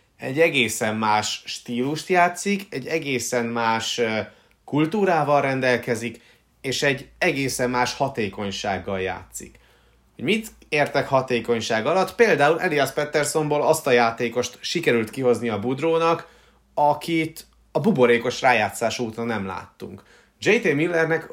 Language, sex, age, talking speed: Hungarian, male, 30-49, 110 wpm